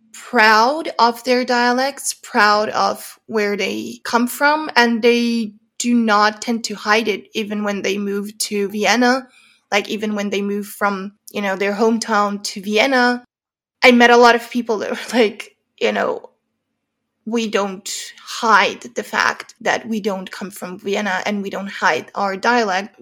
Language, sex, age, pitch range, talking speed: English, female, 20-39, 205-240 Hz, 165 wpm